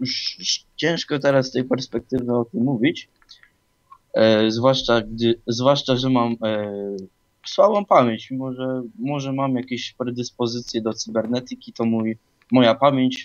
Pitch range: 110-130 Hz